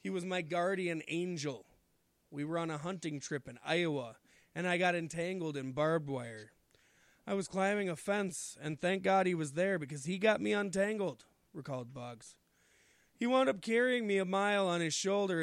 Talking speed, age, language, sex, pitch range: 185 wpm, 20-39, English, male, 150-185 Hz